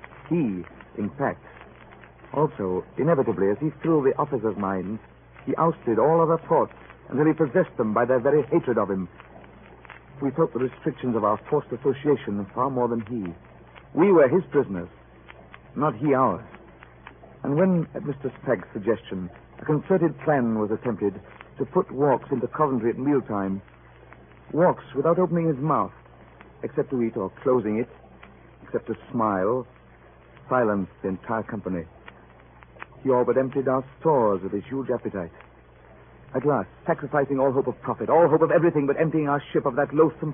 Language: English